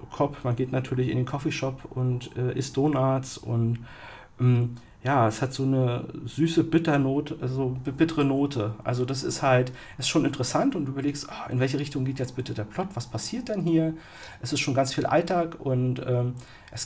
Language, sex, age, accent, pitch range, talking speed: German, male, 40-59, German, 125-140 Hz, 190 wpm